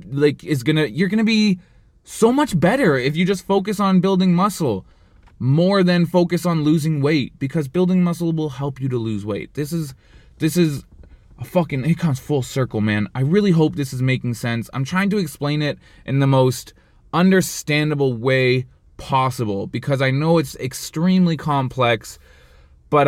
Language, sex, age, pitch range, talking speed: English, male, 20-39, 120-155 Hz, 175 wpm